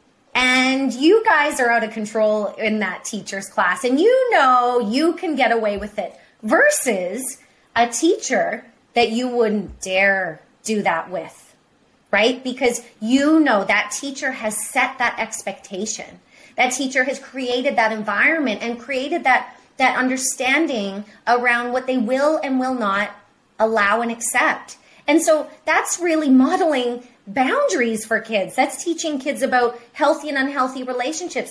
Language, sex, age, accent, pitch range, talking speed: English, female, 30-49, American, 225-275 Hz, 145 wpm